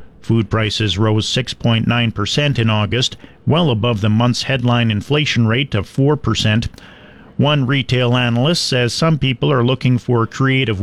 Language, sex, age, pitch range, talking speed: English, male, 50-69, 110-140 Hz, 140 wpm